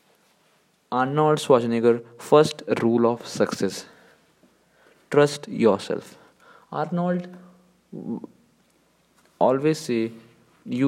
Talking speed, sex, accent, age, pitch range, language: 65 wpm, male, Indian, 20-39, 115-140 Hz, English